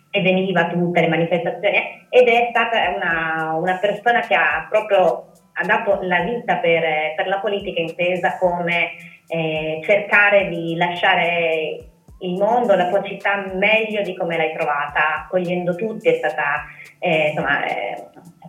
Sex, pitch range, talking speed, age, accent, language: female, 160-185 Hz, 150 wpm, 20-39, native, Italian